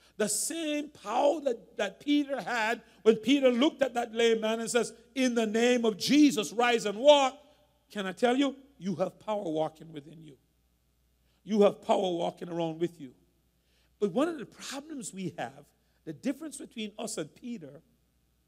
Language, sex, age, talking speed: English, male, 50-69, 175 wpm